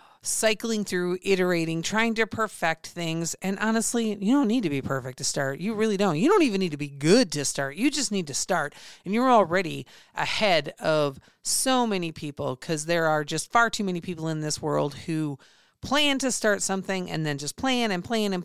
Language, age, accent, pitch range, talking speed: English, 40-59, American, 160-230 Hz, 210 wpm